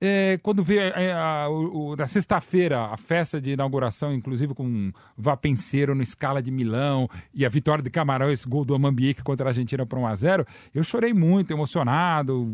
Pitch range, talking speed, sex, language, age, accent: 160-215 Hz, 200 wpm, male, English, 40-59, Brazilian